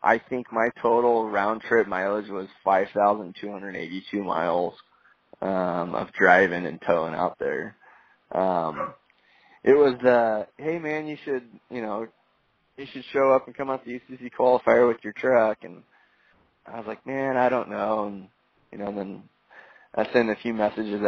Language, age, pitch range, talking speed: English, 20-39, 95-125 Hz, 165 wpm